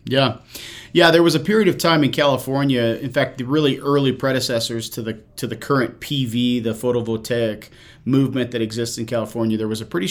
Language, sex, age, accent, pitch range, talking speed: English, male, 40-59, American, 115-140 Hz, 195 wpm